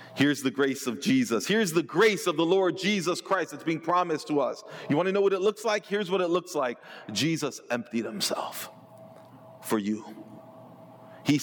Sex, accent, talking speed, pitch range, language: male, American, 195 wpm, 130-195 Hz, English